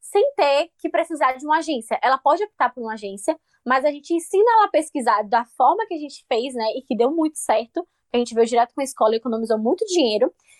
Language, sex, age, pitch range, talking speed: Portuguese, female, 10-29, 235-310 Hz, 245 wpm